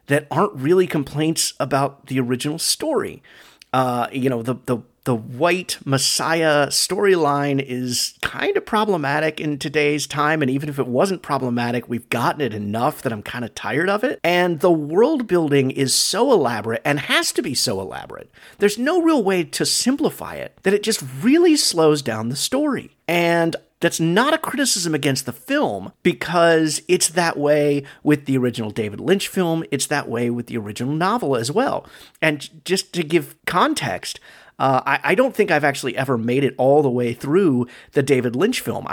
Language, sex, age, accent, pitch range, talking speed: English, male, 40-59, American, 130-175 Hz, 185 wpm